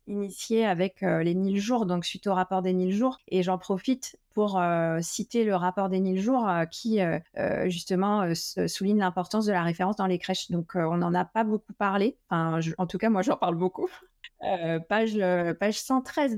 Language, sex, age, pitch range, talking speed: French, female, 30-49, 180-205 Hz, 220 wpm